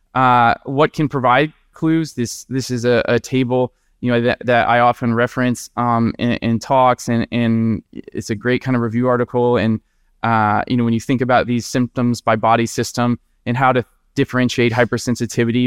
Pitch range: 115-130 Hz